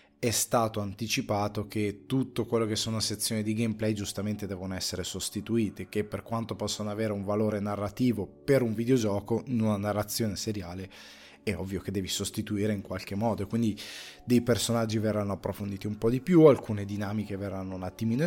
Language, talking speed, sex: Italian, 170 wpm, male